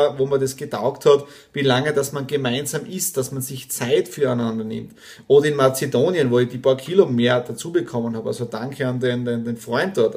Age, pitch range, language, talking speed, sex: 30-49, 130-155 Hz, German, 220 wpm, male